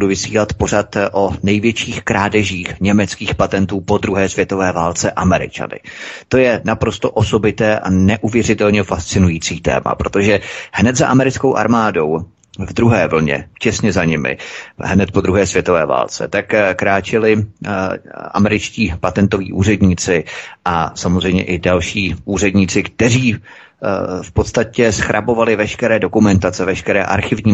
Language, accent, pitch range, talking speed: Czech, native, 90-105 Hz, 120 wpm